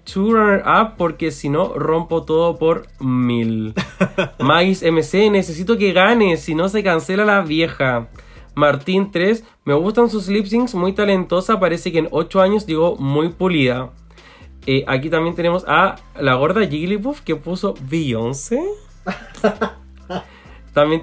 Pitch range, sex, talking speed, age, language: 150-210 Hz, male, 130 wpm, 20-39, Spanish